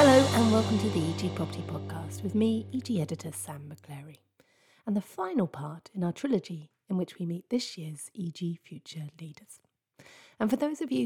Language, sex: English, female